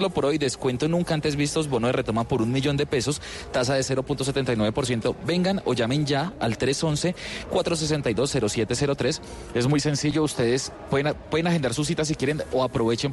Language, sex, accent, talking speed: Spanish, male, Colombian, 165 wpm